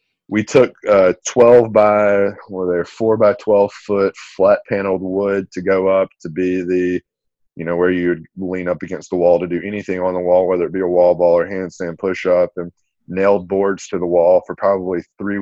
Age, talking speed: 20-39, 210 wpm